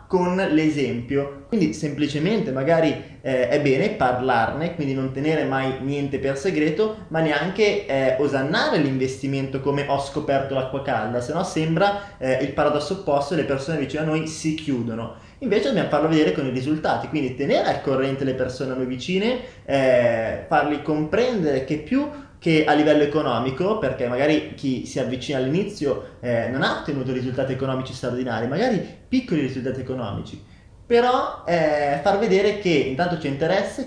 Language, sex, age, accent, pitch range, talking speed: Italian, male, 20-39, native, 135-170 Hz, 160 wpm